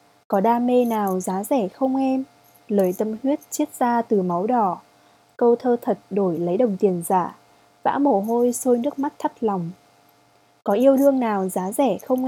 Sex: female